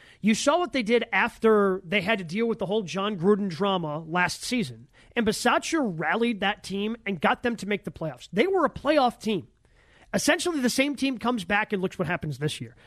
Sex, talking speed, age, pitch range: male, 220 wpm, 30-49, 190-225 Hz